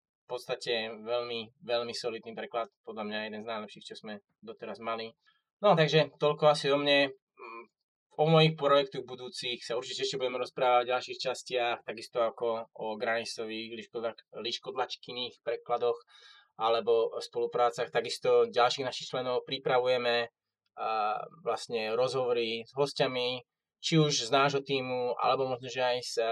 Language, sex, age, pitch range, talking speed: Slovak, male, 20-39, 120-155 Hz, 140 wpm